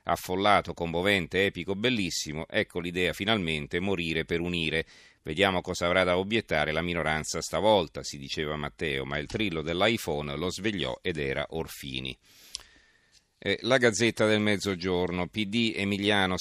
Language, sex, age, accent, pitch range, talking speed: Italian, male, 40-59, native, 80-100 Hz, 135 wpm